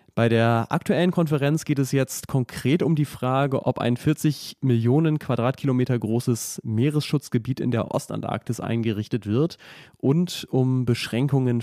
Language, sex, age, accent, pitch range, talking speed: German, male, 30-49, German, 115-140 Hz, 135 wpm